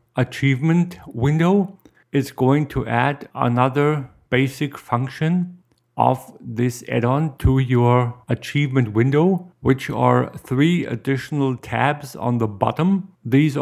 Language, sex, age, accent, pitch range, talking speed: English, male, 50-69, German, 120-150 Hz, 110 wpm